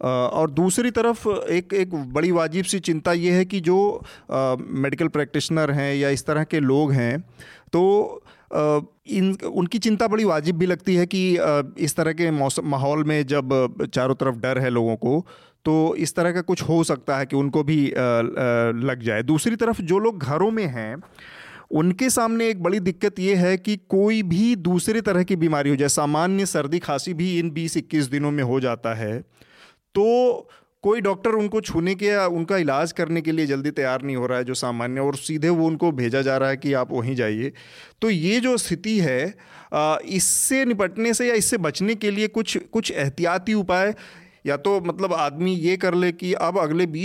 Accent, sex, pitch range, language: native, male, 140-190 Hz, Hindi